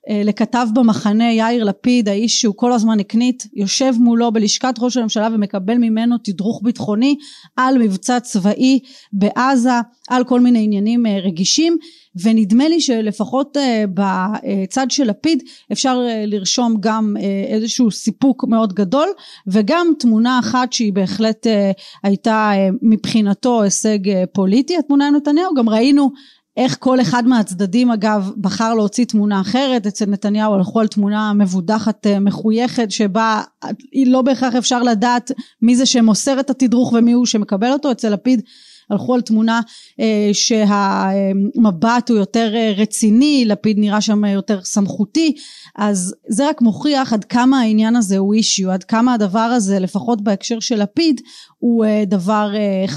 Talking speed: 140 wpm